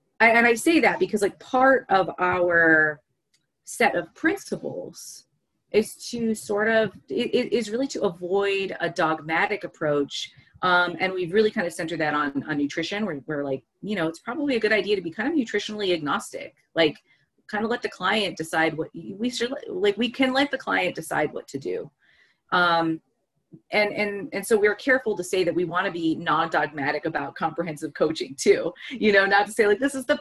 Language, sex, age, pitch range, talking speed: English, female, 30-49, 165-220 Hz, 200 wpm